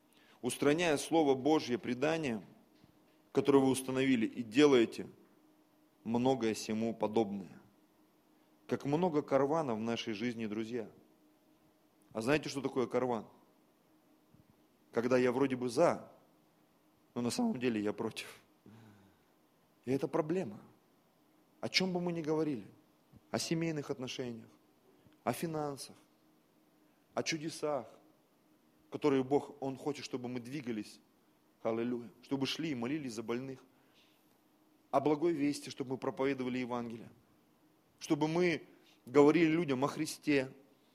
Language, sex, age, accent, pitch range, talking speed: Russian, male, 30-49, native, 120-150 Hz, 115 wpm